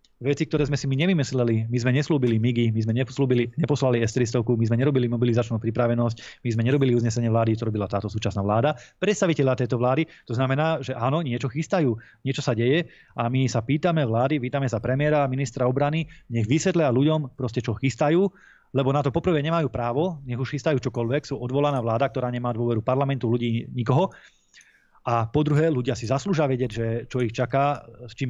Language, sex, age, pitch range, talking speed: Slovak, male, 20-39, 115-140 Hz, 190 wpm